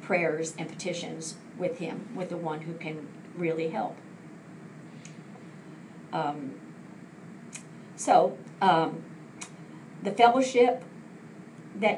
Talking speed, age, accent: 90 wpm, 50-69, American